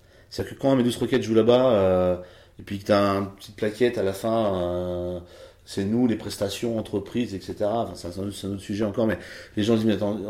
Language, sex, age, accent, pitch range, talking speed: French, male, 40-59, French, 105-135 Hz, 225 wpm